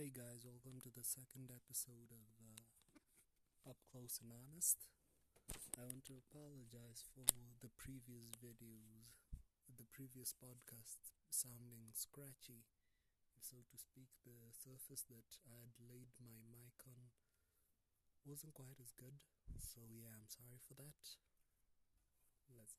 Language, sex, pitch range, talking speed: English, male, 110-130 Hz, 130 wpm